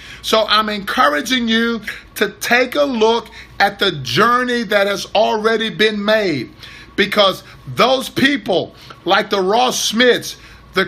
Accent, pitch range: American, 205-255 Hz